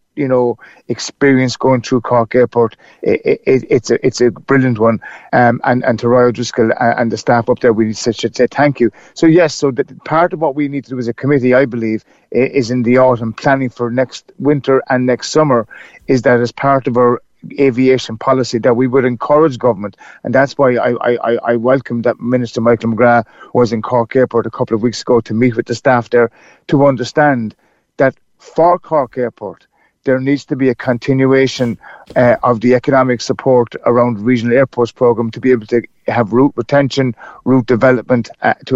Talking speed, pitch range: 200 wpm, 120-135 Hz